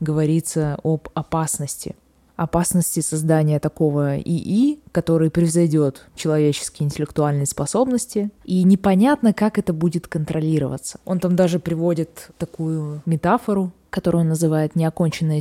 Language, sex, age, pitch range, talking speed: Russian, female, 20-39, 155-200 Hz, 110 wpm